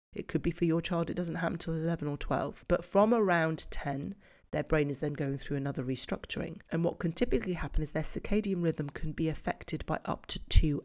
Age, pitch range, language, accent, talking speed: 30-49, 150-185 Hz, English, British, 225 wpm